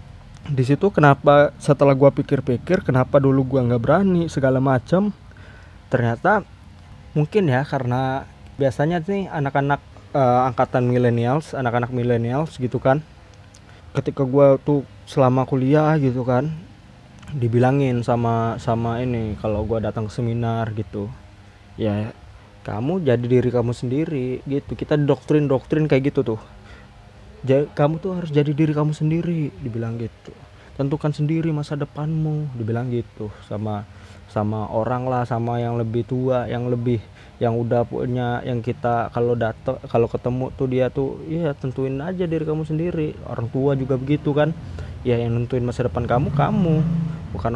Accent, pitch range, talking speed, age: native, 115-145 Hz, 140 wpm, 20-39